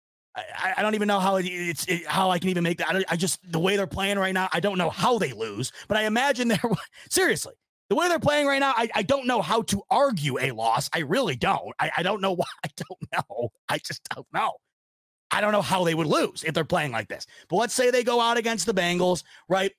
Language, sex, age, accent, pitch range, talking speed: English, male, 30-49, American, 165-230 Hz, 255 wpm